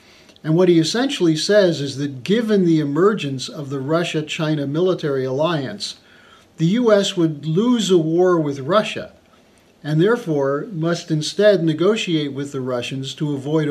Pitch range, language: 140-175 Hz, English